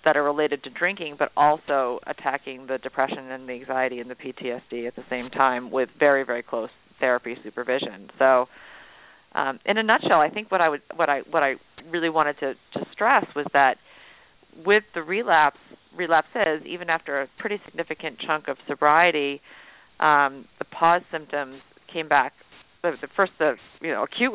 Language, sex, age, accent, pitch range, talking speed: English, female, 40-59, American, 135-165 Hz, 175 wpm